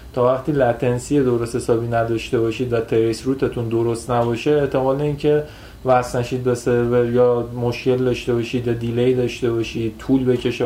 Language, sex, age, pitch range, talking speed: Persian, male, 30-49, 115-135 Hz, 150 wpm